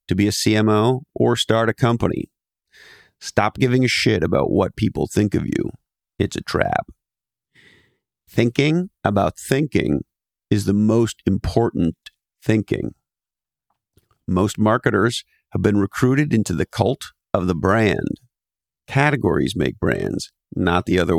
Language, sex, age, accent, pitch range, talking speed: English, male, 50-69, American, 95-115 Hz, 130 wpm